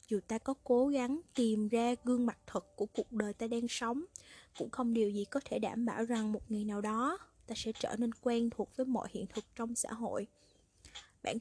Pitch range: 205-245 Hz